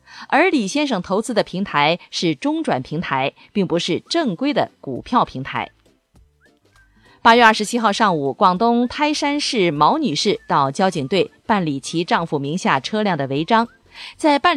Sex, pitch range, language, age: female, 160-240 Hz, Chinese, 30-49